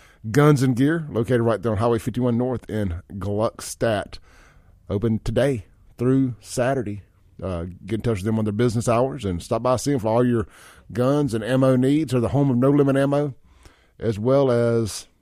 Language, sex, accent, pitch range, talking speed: English, male, American, 105-130 Hz, 195 wpm